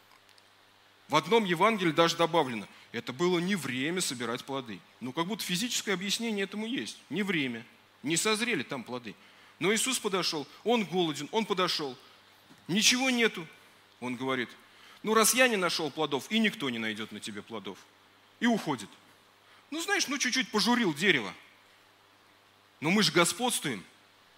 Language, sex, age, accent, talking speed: Russian, male, 30-49, native, 150 wpm